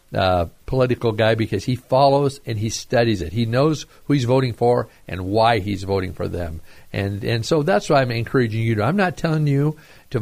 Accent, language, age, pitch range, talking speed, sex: American, English, 50-69, 110-140 Hz, 205 wpm, male